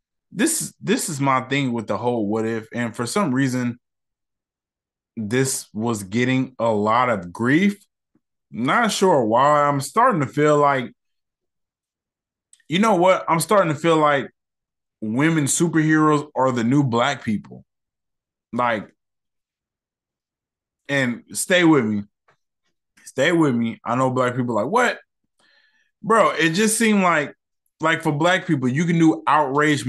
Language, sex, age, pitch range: English, male, 20-39, 125-160 Hz